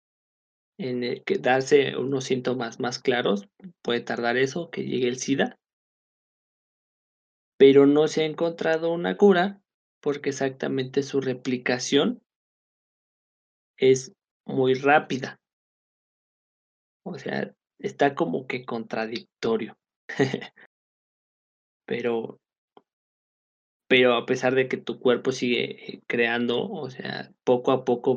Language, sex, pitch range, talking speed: Spanish, male, 120-140 Hz, 110 wpm